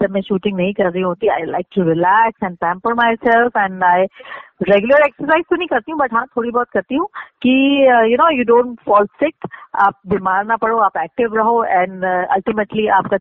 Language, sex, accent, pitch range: Hindi, female, native, 190-240 Hz